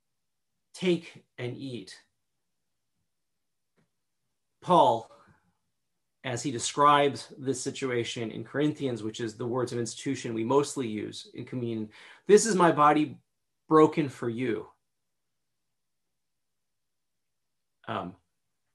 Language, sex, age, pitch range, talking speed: English, male, 40-59, 120-160 Hz, 95 wpm